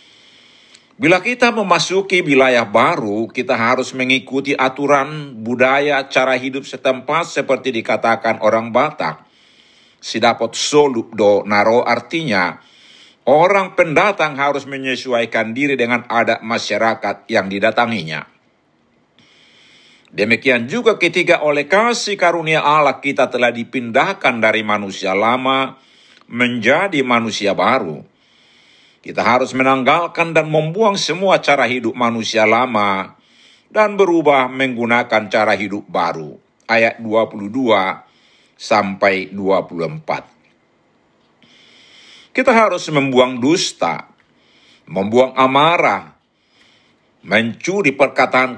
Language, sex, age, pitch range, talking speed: Indonesian, male, 50-69, 115-155 Hz, 95 wpm